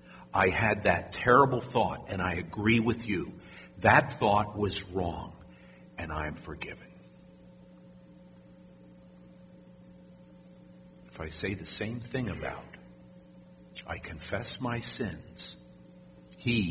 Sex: male